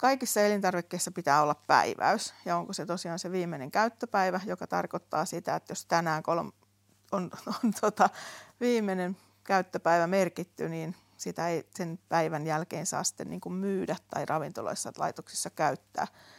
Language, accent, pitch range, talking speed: Finnish, native, 165-195 Hz, 145 wpm